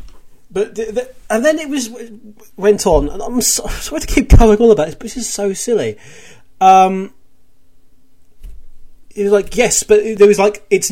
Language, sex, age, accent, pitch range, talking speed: English, male, 30-49, British, 135-210 Hz, 180 wpm